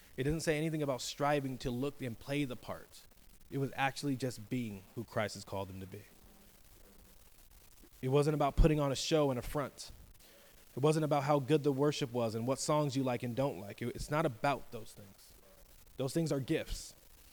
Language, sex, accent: English, male, American